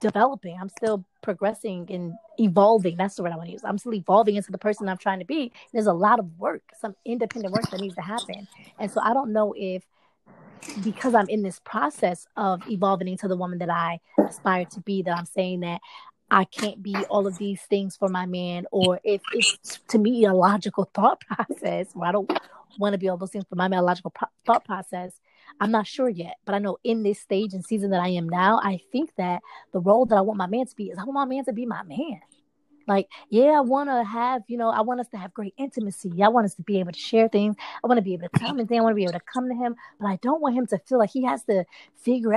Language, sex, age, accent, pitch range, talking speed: English, female, 20-39, American, 190-230 Hz, 260 wpm